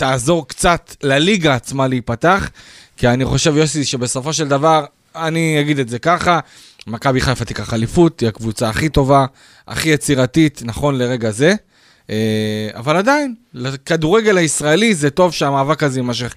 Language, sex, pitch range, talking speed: Hebrew, male, 125-175 Hz, 145 wpm